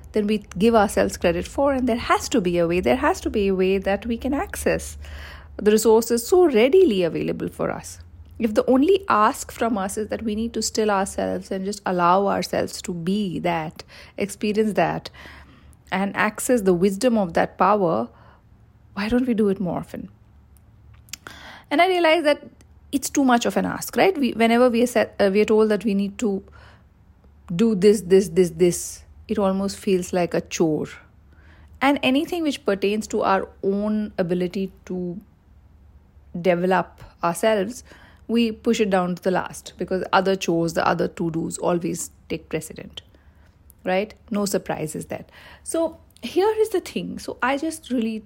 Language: English